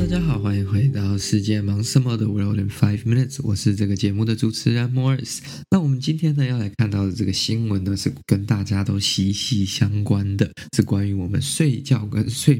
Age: 20-39